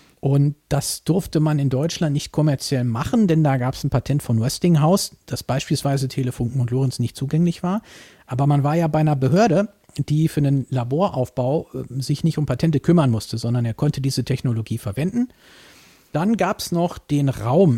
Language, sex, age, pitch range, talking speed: German, male, 50-69, 120-150 Hz, 185 wpm